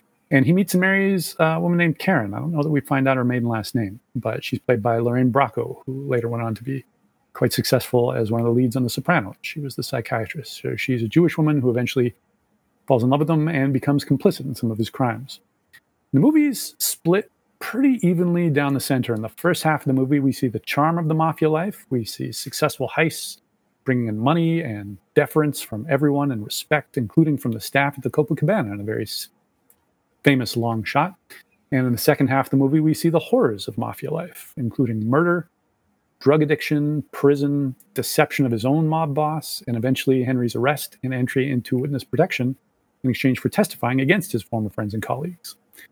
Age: 40-59